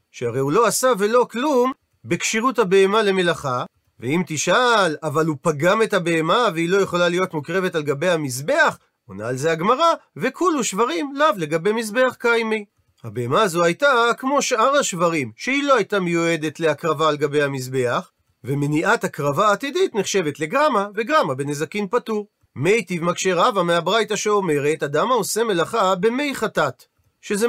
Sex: male